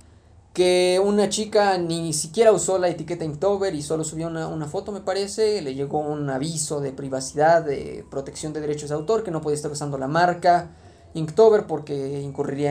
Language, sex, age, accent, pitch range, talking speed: Spanish, male, 20-39, Mexican, 140-190 Hz, 185 wpm